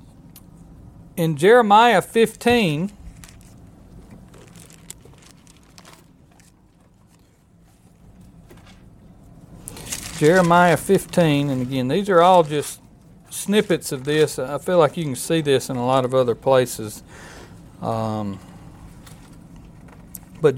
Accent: American